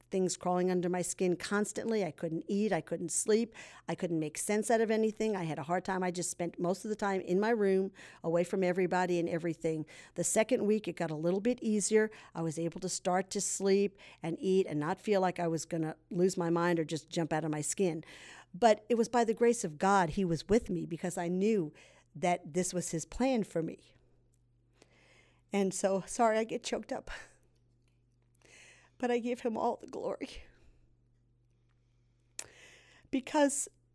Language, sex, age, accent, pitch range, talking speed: English, female, 50-69, American, 170-230 Hz, 200 wpm